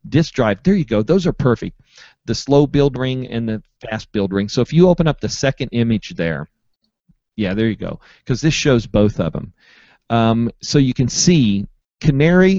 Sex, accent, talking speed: male, American, 200 wpm